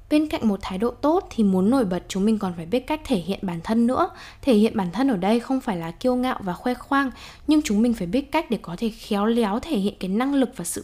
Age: 10-29